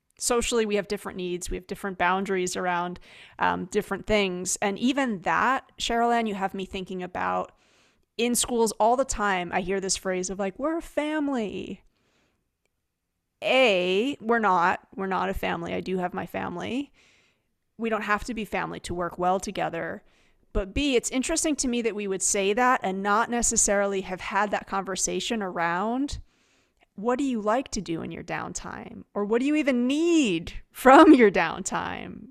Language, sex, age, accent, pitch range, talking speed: English, female, 30-49, American, 190-230 Hz, 175 wpm